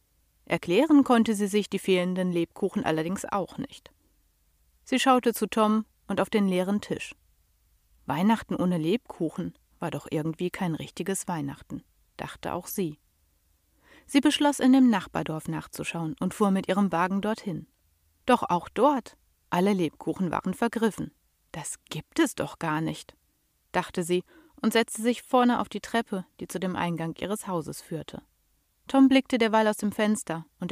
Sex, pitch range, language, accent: female, 165-230 Hz, German, German